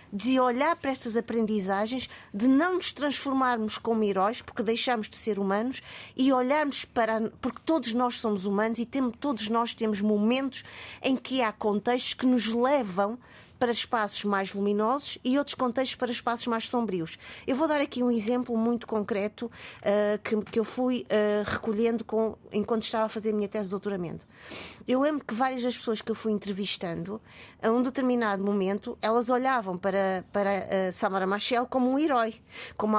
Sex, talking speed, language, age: female, 170 wpm, Portuguese, 20-39